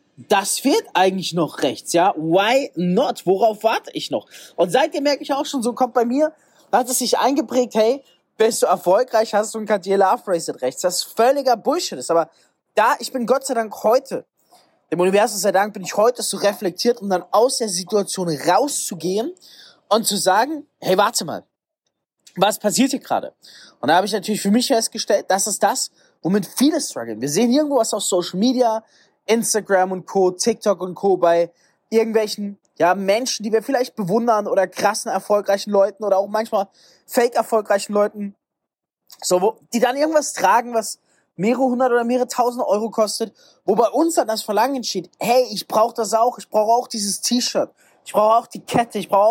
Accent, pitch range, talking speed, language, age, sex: German, 195-245 Hz, 190 wpm, German, 20-39, male